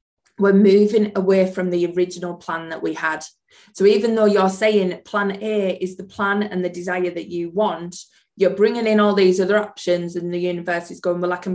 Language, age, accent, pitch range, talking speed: English, 20-39, British, 175-205 Hz, 215 wpm